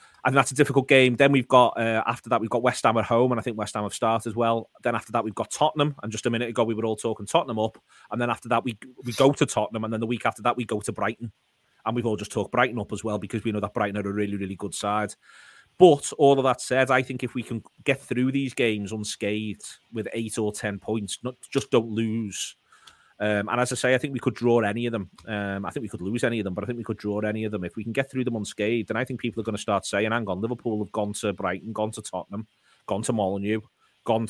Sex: male